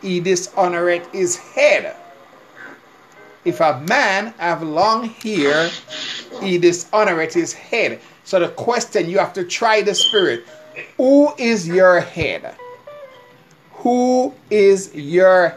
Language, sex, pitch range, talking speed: English, male, 170-230 Hz, 115 wpm